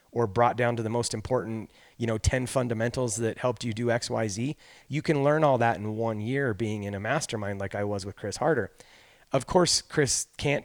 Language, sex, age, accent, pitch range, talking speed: English, male, 30-49, American, 105-130 Hz, 225 wpm